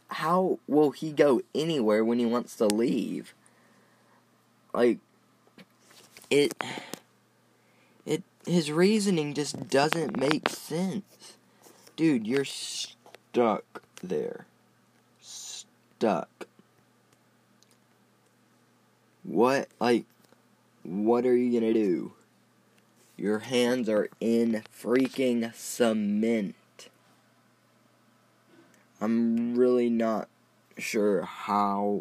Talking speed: 80 wpm